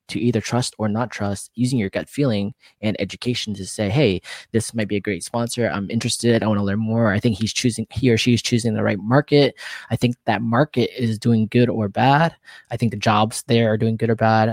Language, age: English, 20-39